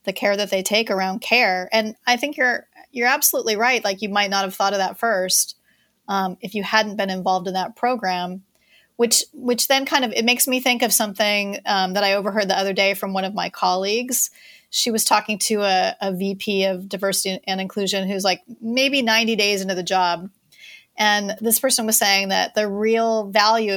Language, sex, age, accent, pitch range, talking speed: English, female, 30-49, American, 195-235 Hz, 210 wpm